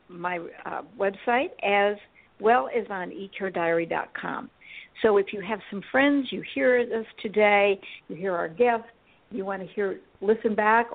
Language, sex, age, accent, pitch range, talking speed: English, female, 60-79, American, 190-235 Hz, 155 wpm